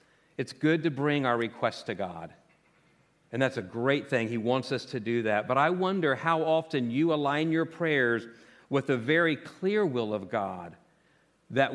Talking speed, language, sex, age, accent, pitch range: 185 wpm, English, male, 50-69, American, 115-160 Hz